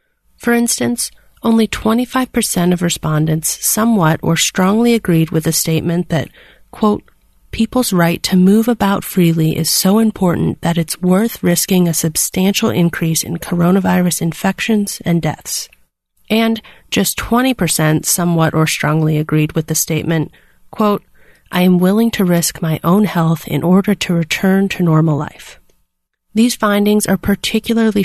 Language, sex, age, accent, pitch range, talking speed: English, female, 30-49, American, 165-210 Hz, 140 wpm